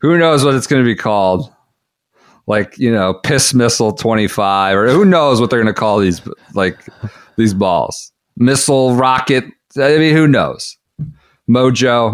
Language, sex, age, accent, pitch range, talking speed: English, male, 40-59, American, 95-130 Hz, 165 wpm